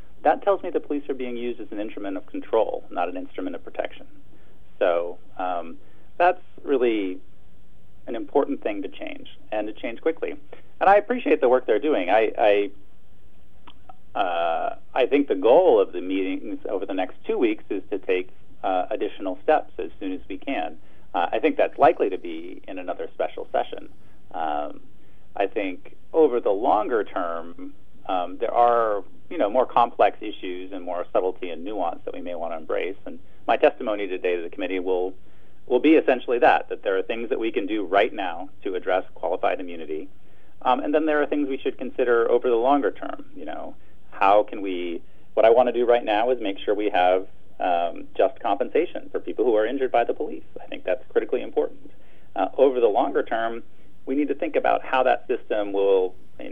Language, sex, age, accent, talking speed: English, male, 40-59, American, 200 wpm